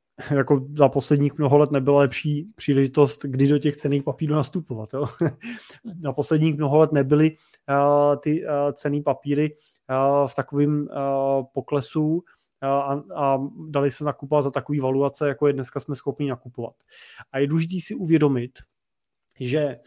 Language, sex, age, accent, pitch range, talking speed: Czech, male, 20-39, native, 135-155 Hz, 150 wpm